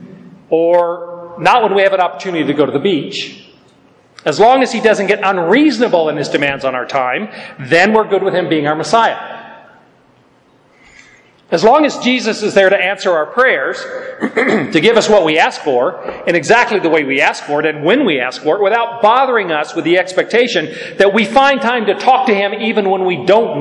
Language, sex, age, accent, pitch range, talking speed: English, male, 40-59, American, 170-240 Hz, 210 wpm